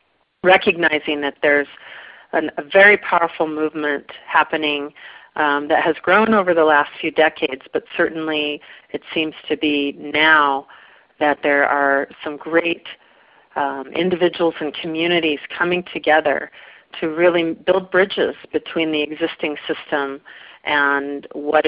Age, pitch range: 40-59, 150-180 Hz